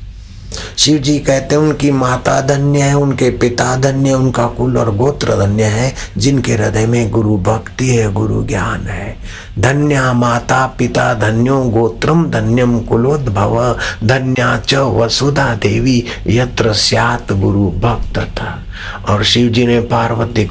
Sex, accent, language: male, native, Hindi